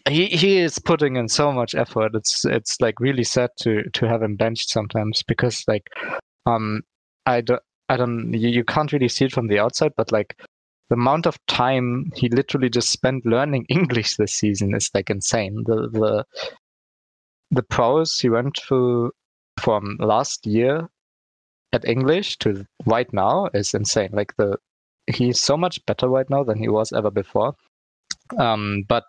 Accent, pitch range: German, 105-130 Hz